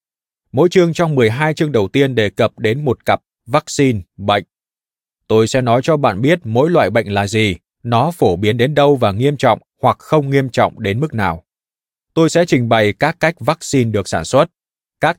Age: 20-39